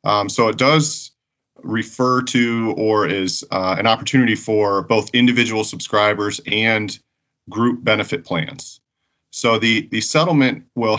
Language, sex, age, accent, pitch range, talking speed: English, male, 40-59, American, 100-120 Hz, 130 wpm